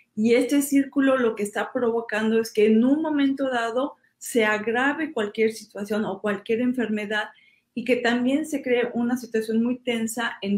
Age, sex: 40-59, female